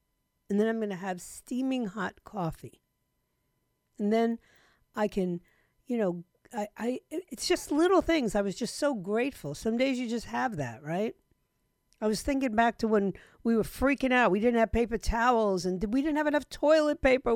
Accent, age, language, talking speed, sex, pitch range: American, 50-69, English, 195 wpm, female, 175-235 Hz